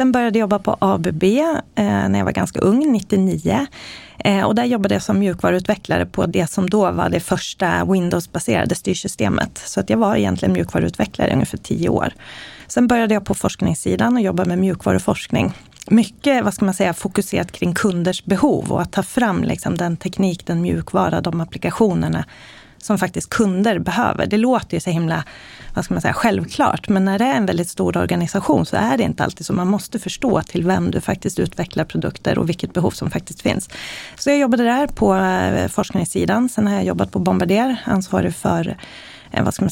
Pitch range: 180-225 Hz